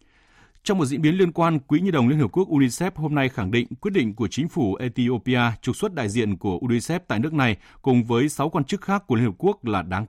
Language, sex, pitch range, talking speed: Vietnamese, male, 110-150 Hz, 260 wpm